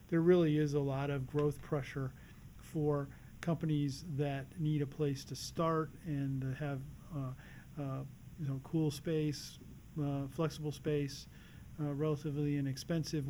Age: 50-69